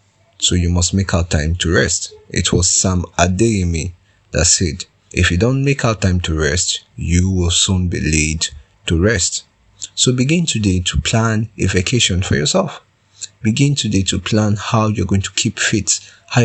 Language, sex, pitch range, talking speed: English, male, 90-105 Hz, 180 wpm